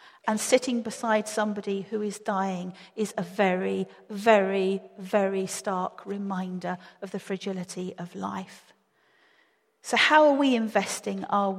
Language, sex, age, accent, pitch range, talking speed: English, female, 40-59, British, 185-220 Hz, 130 wpm